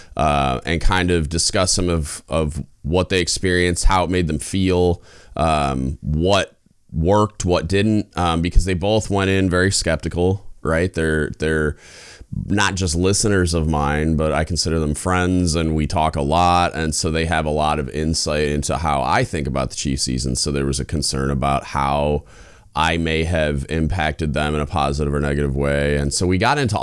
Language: English